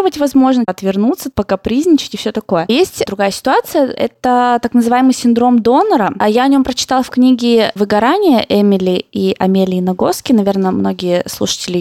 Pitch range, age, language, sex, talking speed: 210-275 Hz, 20-39, Russian, female, 145 wpm